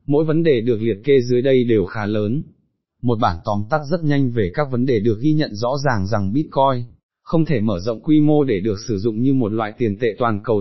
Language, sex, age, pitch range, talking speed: Vietnamese, male, 20-39, 110-145 Hz, 255 wpm